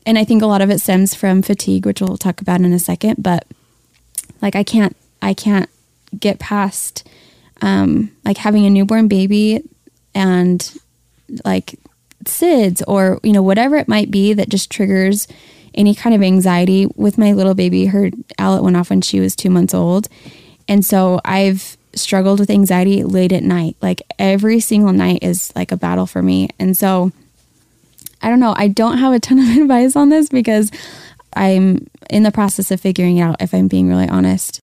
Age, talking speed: 20-39, 190 wpm